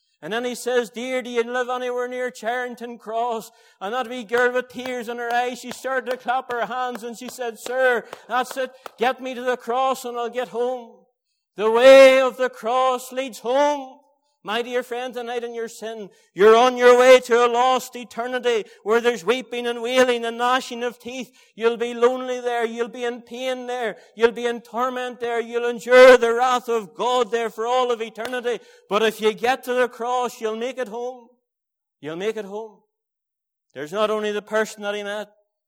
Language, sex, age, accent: English, male, 60-79, Irish